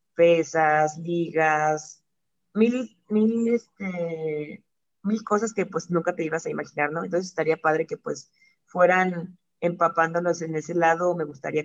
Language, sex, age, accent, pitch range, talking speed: Spanish, female, 20-39, Mexican, 155-175 Hz, 140 wpm